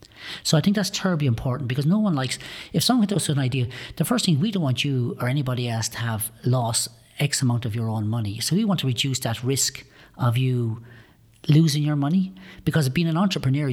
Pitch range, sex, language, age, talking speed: 125-160 Hz, female, English, 40-59, 225 wpm